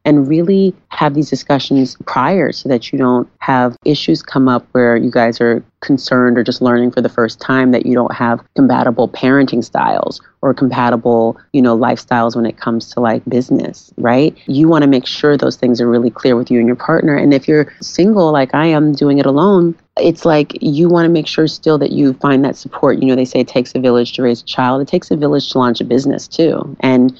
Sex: female